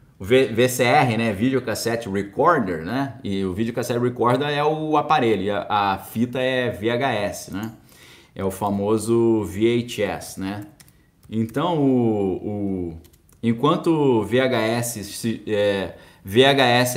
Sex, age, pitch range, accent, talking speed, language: male, 20-39, 110-145 Hz, Brazilian, 110 wpm, Portuguese